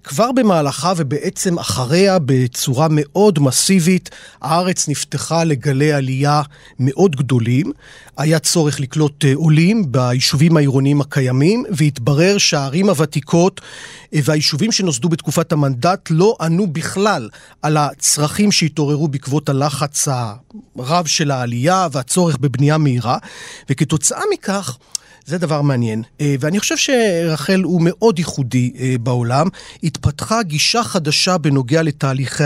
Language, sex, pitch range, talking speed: Hebrew, male, 145-190 Hz, 105 wpm